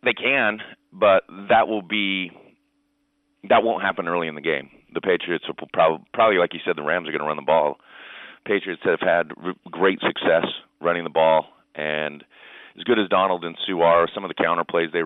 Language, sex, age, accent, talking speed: English, male, 30-49, American, 205 wpm